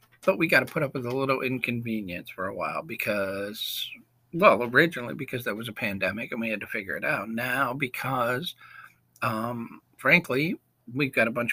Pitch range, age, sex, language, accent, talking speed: 110-140 Hz, 50-69, male, English, American, 185 wpm